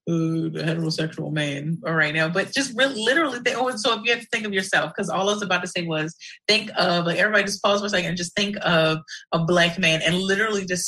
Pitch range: 165-205 Hz